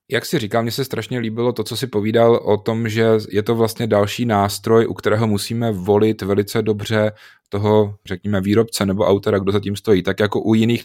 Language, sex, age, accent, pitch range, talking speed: Czech, male, 30-49, native, 100-115 Hz, 210 wpm